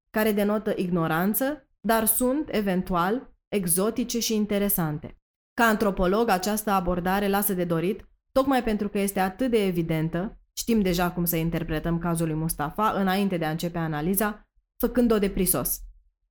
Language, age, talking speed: Romanian, 20-39, 140 wpm